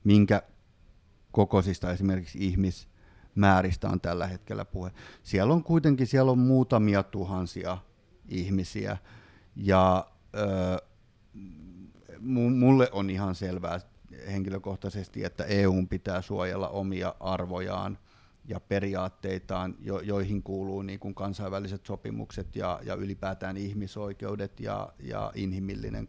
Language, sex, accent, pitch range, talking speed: Finnish, male, native, 95-110 Hz, 100 wpm